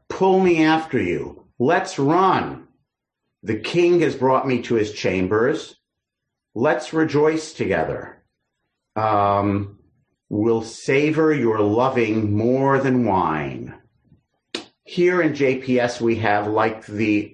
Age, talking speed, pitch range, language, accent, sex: 50-69, 110 wpm, 105-130 Hz, English, American, male